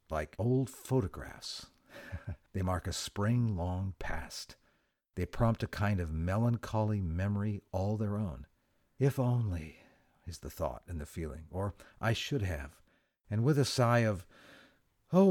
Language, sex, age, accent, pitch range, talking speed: English, male, 50-69, American, 85-125 Hz, 140 wpm